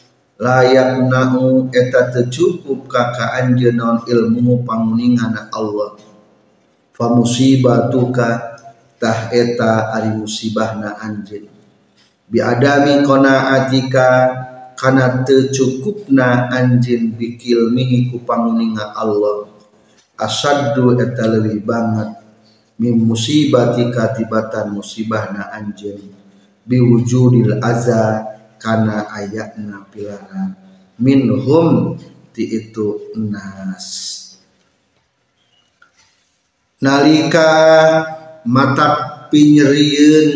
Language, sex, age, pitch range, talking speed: Indonesian, male, 40-59, 115-140 Hz, 70 wpm